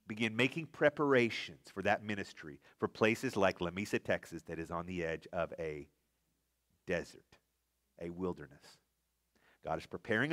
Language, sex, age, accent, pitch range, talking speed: English, male, 40-59, American, 100-165 Hz, 140 wpm